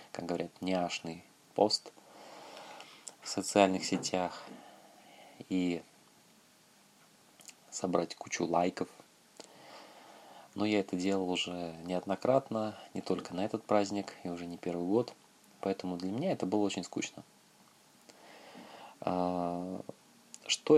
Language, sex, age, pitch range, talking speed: Russian, male, 20-39, 85-100 Hz, 100 wpm